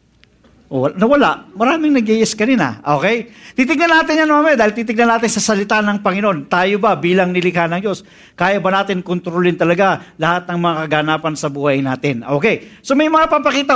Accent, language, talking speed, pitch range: Filipino, English, 175 wpm, 185-235 Hz